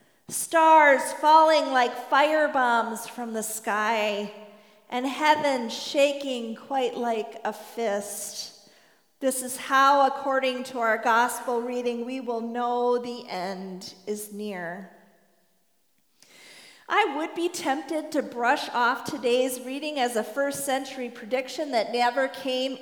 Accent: American